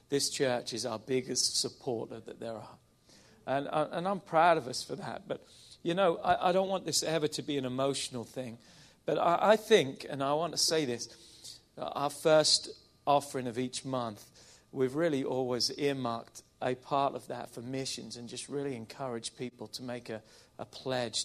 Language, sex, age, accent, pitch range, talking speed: English, male, 40-59, British, 120-145 Hz, 190 wpm